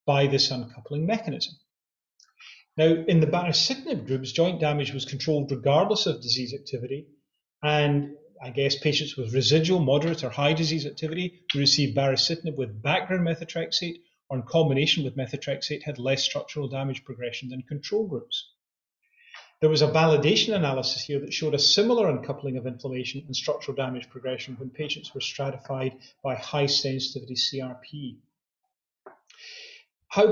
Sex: male